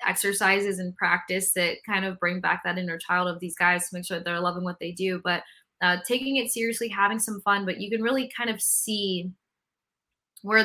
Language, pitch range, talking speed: English, 175-205 Hz, 220 wpm